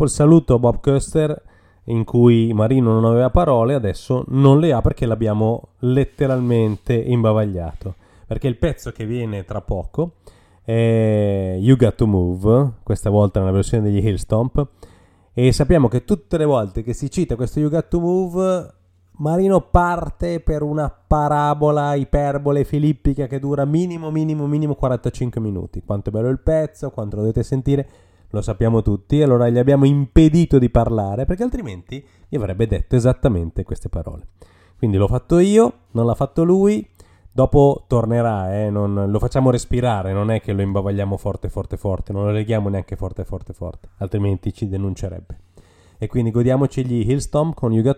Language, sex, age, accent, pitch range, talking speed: Italian, male, 30-49, native, 100-140 Hz, 165 wpm